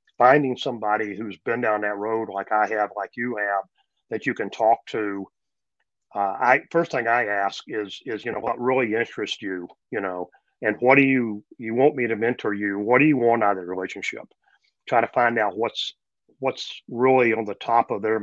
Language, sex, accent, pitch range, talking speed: English, male, American, 100-120 Hz, 210 wpm